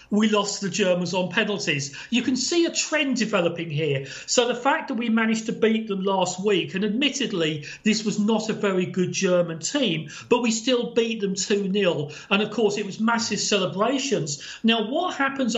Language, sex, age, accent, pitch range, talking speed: English, male, 40-59, British, 195-240 Hz, 195 wpm